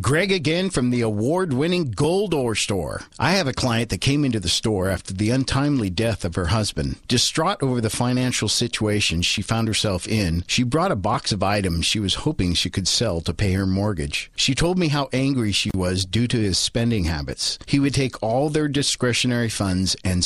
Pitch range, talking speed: 95-130 Hz, 205 wpm